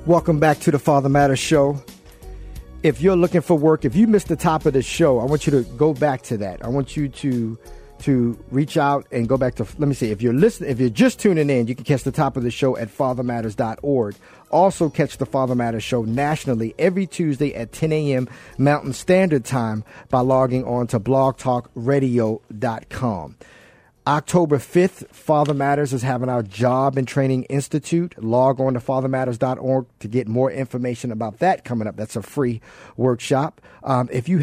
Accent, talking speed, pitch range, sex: American, 190 wpm, 120-145 Hz, male